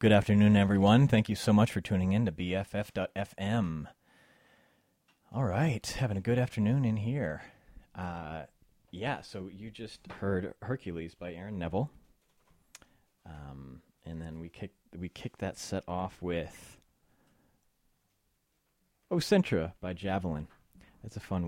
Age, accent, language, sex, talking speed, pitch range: 30-49, American, English, male, 135 wpm, 90-105 Hz